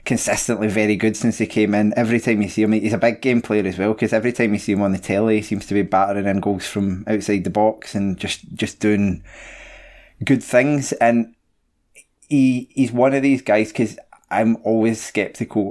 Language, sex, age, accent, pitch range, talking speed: English, male, 20-39, British, 100-115 Hz, 215 wpm